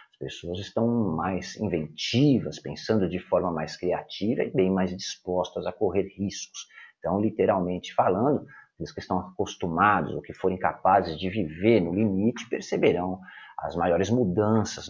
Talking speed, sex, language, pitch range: 140 wpm, male, Portuguese, 90-115 Hz